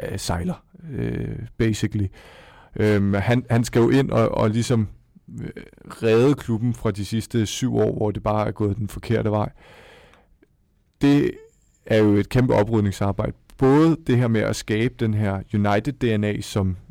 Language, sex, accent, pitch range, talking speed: Danish, male, native, 105-120 Hz, 150 wpm